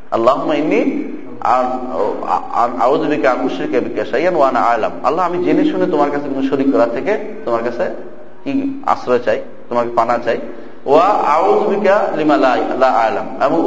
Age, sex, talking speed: 40-59, male, 80 wpm